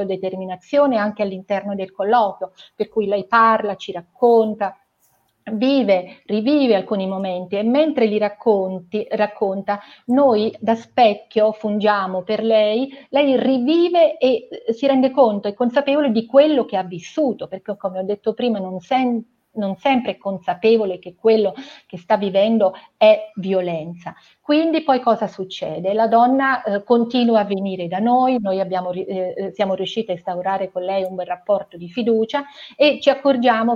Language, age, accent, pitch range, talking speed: Italian, 40-59, native, 190-240 Hz, 150 wpm